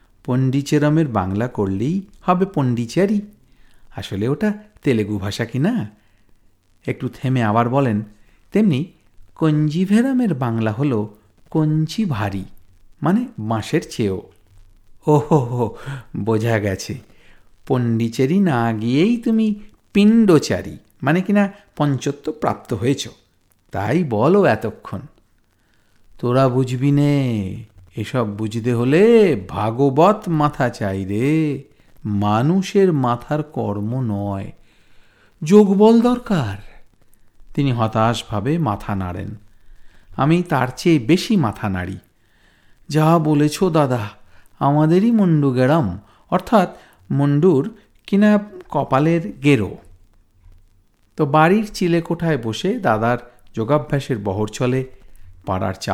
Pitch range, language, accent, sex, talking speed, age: 105-160 Hz, Bengali, native, male, 90 wpm, 50-69